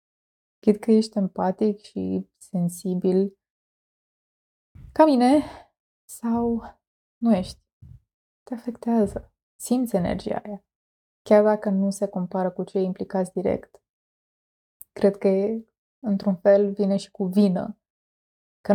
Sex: female